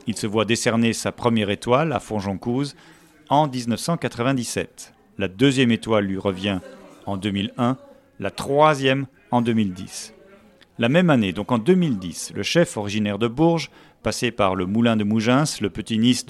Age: 40-59